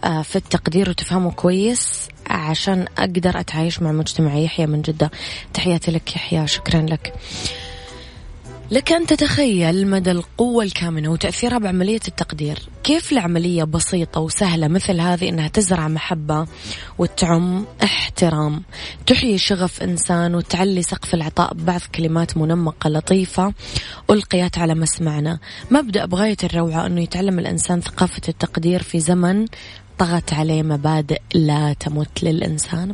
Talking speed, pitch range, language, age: 120 wpm, 155-185 Hz, Arabic, 20-39